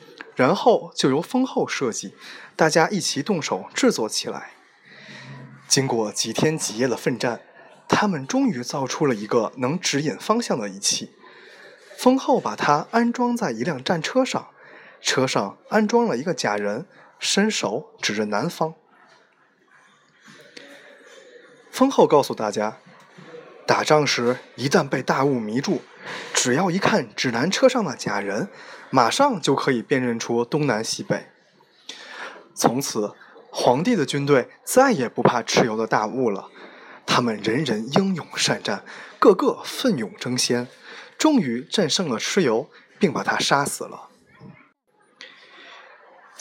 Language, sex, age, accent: Chinese, male, 20-39, native